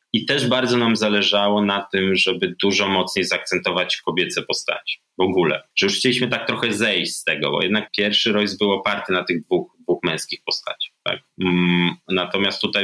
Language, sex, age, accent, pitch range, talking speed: Polish, male, 20-39, native, 95-115 Hz, 180 wpm